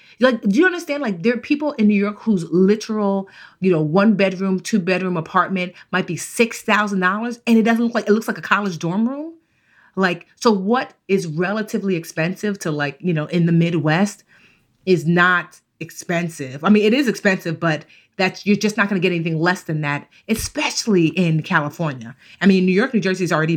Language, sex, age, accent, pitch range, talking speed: English, female, 30-49, American, 160-205 Hz, 200 wpm